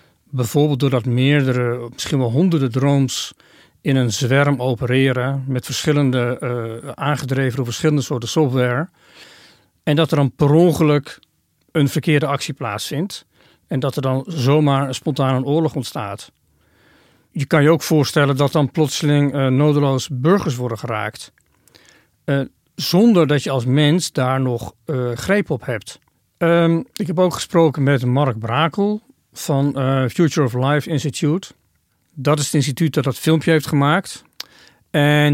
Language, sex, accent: Dutch, male, Dutch